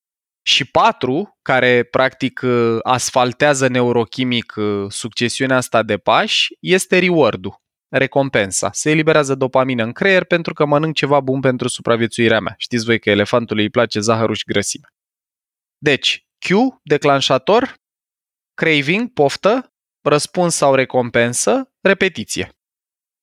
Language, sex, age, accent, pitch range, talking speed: Romanian, male, 20-39, native, 130-175 Hz, 115 wpm